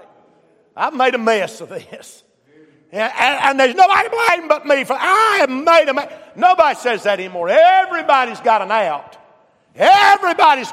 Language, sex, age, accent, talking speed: English, male, 50-69, American, 160 wpm